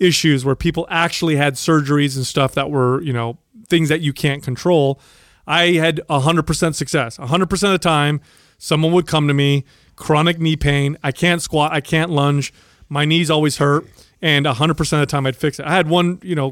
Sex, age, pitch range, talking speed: male, 30-49, 135-160 Hz, 205 wpm